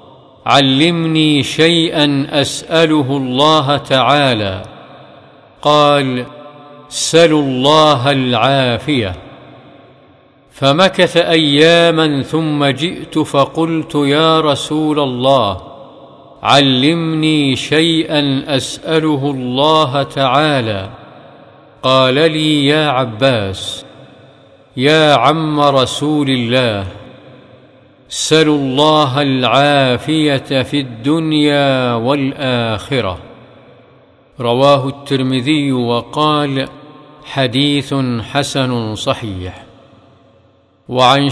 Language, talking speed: Arabic, 60 wpm